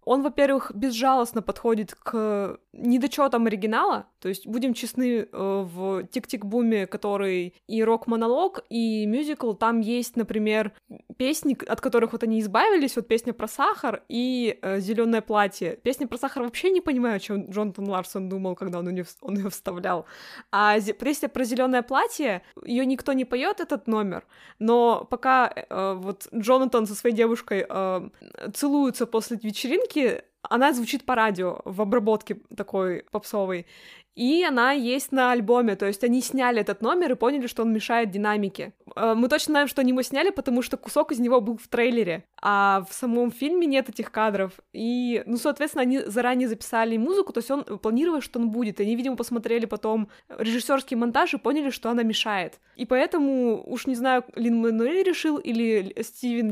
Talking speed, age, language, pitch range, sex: 165 wpm, 20-39, Russian, 215-260 Hz, female